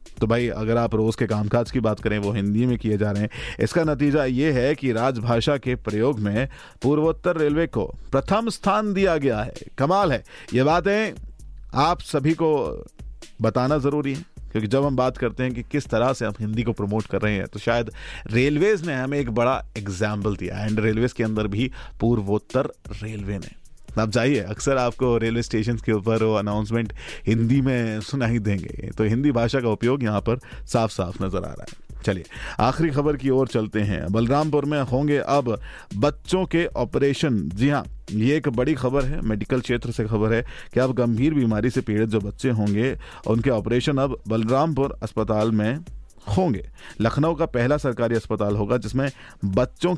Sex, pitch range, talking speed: male, 110-140 Hz, 185 wpm